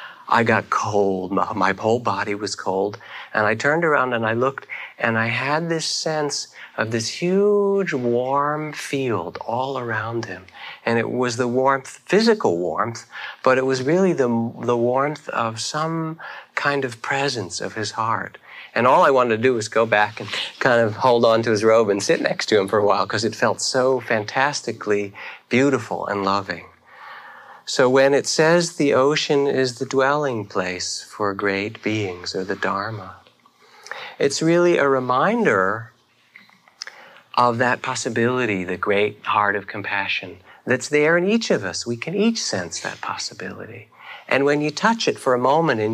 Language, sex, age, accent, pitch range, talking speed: English, male, 40-59, American, 105-140 Hz, 175 wpm